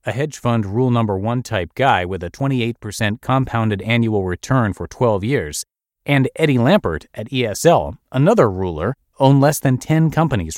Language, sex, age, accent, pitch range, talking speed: English, male, 30-49, American, 100-140 Hz, 165 wpm